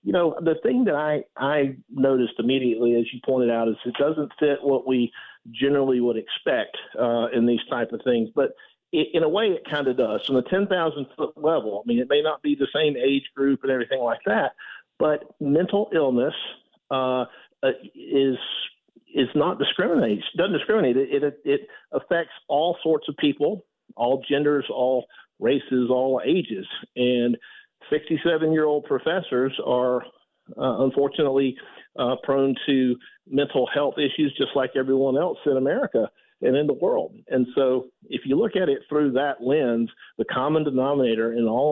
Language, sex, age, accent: English, male, 50-69, American